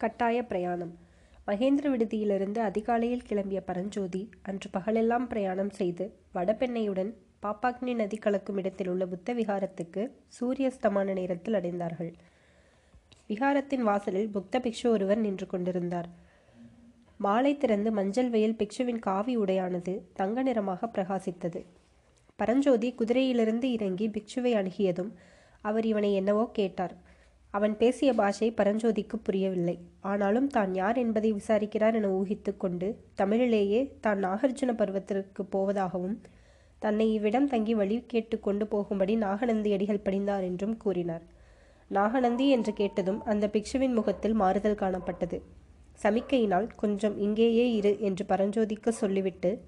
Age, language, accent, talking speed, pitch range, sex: 20-39, Tamil, native, 110 wpm, 195-230 Hz, female